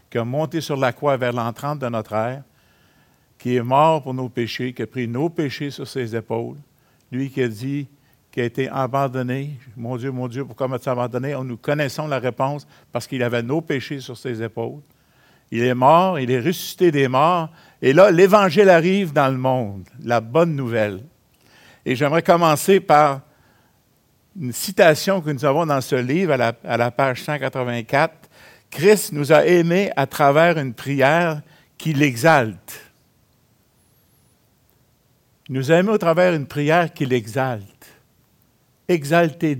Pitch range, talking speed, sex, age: 125-160 Hz, 165 wpm, male, 60-79